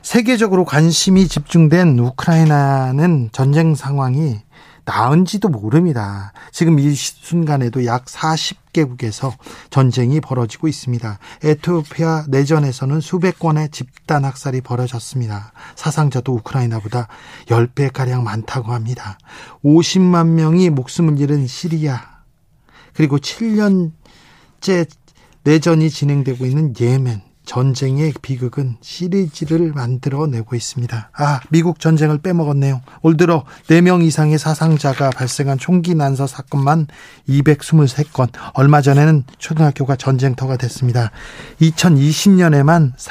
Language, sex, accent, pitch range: Korean, male, native, 130-160 Hz